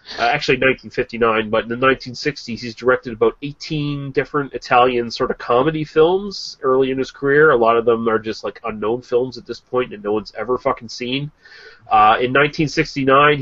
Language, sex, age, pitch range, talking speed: English, male, 30-49, 115-145 Hz, 185 wpm